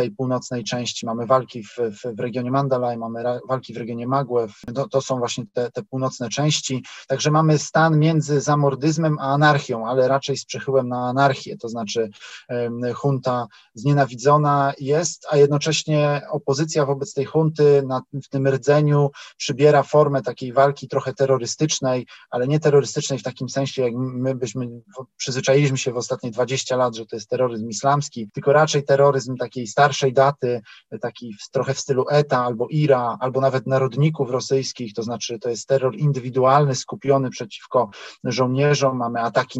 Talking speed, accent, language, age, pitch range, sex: 160 wpm, native, Polish, 20-39, 125-140 Hz, male